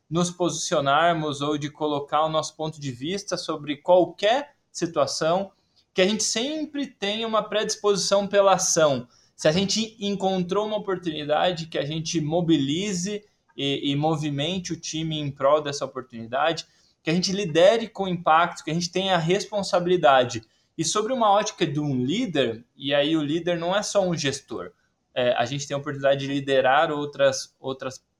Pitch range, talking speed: 140-185 Hz, 165 wpm